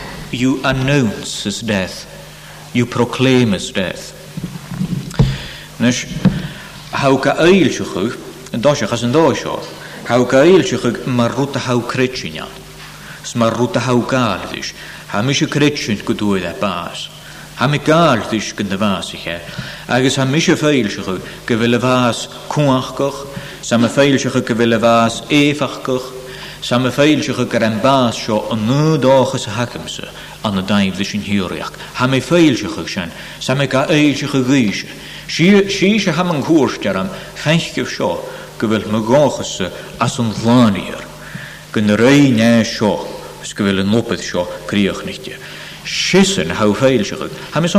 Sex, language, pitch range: male, English, 115-155 Hz